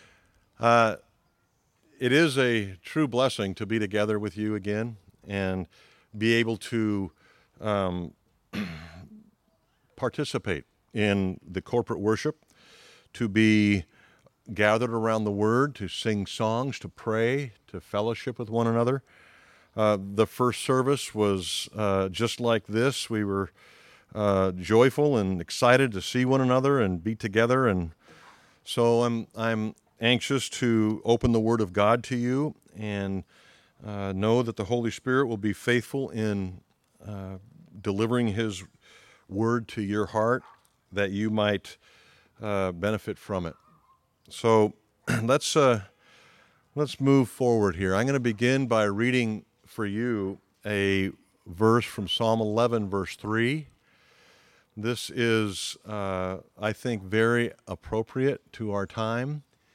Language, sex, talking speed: English, male, 130 wpm